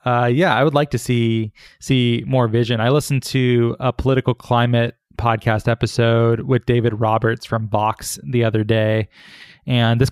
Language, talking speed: English, 165 wpm